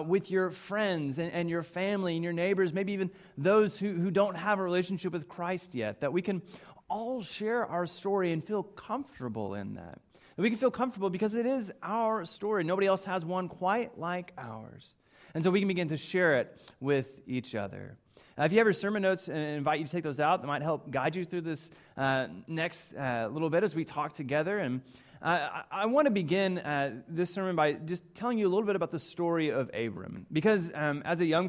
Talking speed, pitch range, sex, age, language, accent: 225 wpm, 150-200 Hz, male, 30-49, English, American